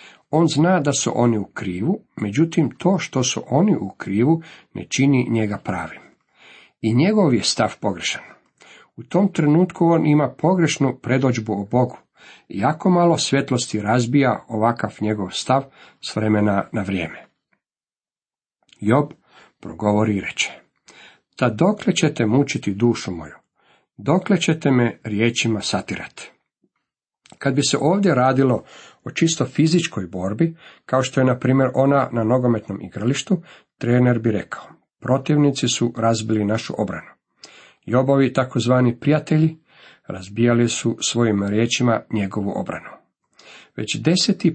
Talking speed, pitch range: 125 wpm, 110-155 Hz